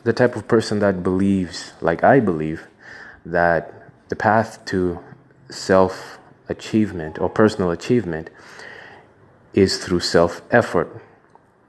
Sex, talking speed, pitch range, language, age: male, 105 wpm, 85-105 Hz, English, 20-39